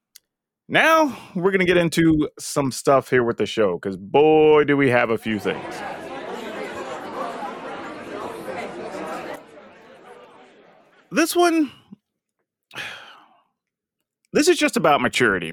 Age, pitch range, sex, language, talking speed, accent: 30-49, 120-195 Hz, male, English, 105 wpm, American